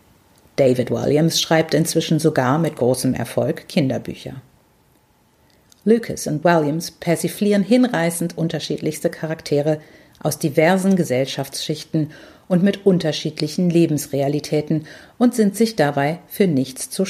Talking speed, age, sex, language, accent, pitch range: 105 wpm, 50-69, female, German, German, 150-195 Hz